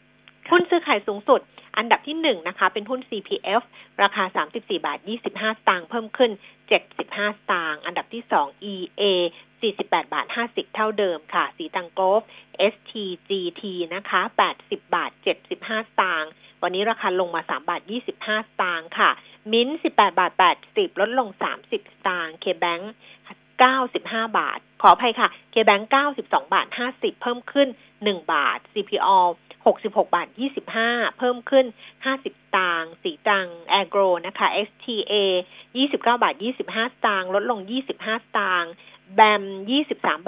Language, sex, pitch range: Thai, female, 195-265 Hz